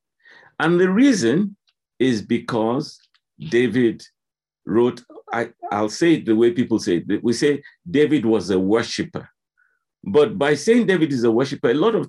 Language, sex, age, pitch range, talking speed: English, male, 50-69, 105-150 Hz, 155 wpm